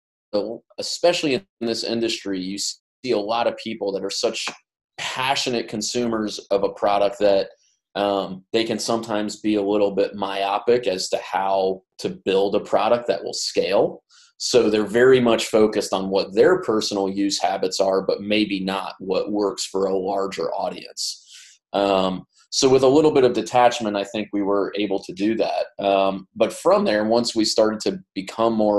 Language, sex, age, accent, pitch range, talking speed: English, male, 30-49, American, 100-115 Hz, 175 wpm